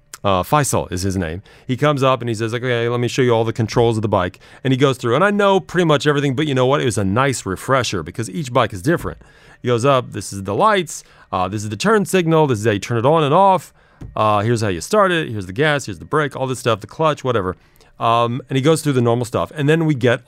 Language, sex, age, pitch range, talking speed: English, male, 30-49, 105-145 Hz, 290 wpm